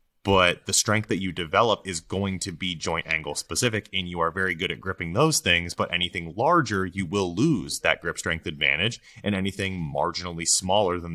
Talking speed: 200 wpm